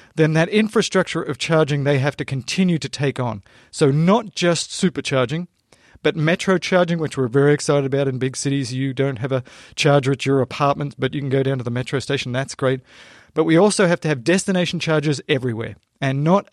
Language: English